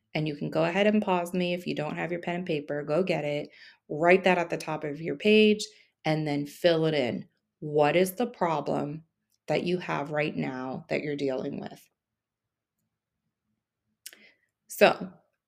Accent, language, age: American, English, 30-49